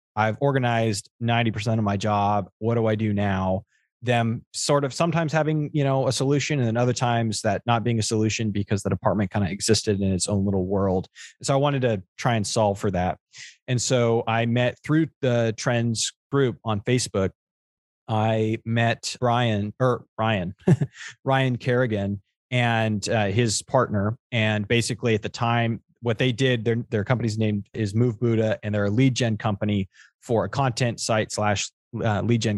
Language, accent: English, American